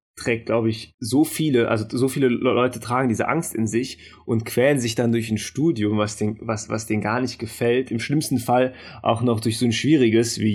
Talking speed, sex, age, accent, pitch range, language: 215 wpm, male, 20-39, German, 105-120 Hz, German